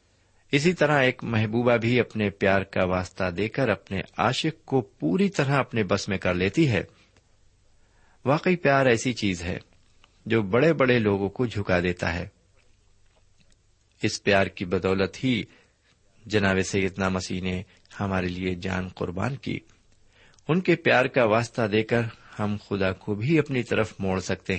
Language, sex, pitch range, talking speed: Urdu, male, 95-125 Hz, 155 wpm